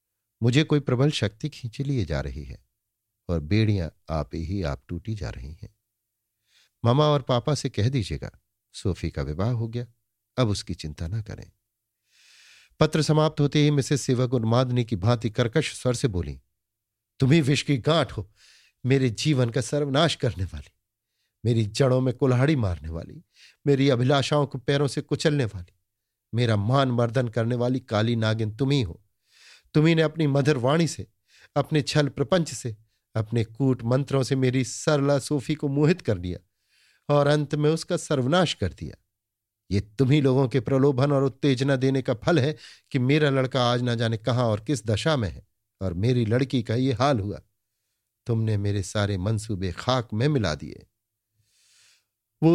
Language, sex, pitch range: Hindi, male, 105-140 Hz